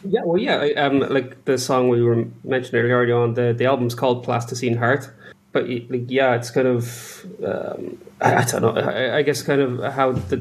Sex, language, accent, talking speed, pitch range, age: male, English, Irish, 210 wpm, 120-135 Hz, 20-39